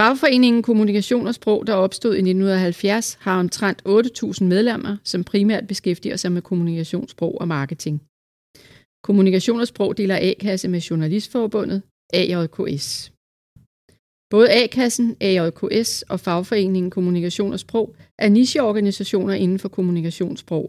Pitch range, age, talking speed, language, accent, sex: 170-215 Hz, 40-59, 120 wpm, Danish, native, female